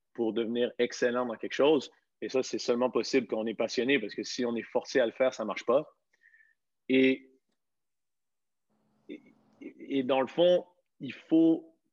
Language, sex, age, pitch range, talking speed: French, male, 30-49, 125-160 Hz, 170 wpm